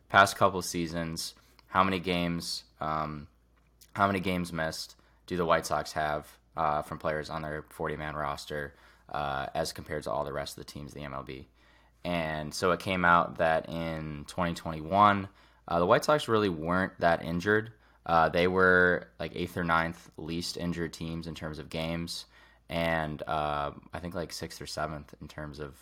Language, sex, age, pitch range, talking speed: English, male, 20-39, 75-85 Hz, 180 wpm